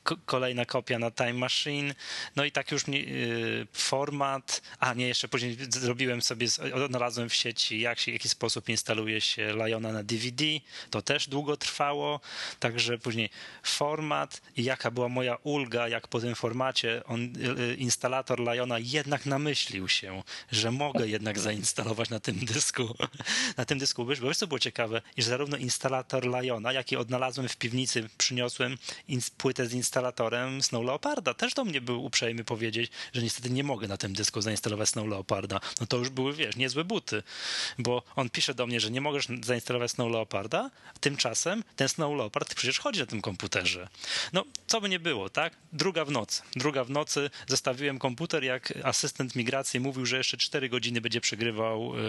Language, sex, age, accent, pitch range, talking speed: Polish, male, 20-39, native, 115-135 Hz, 170 wpm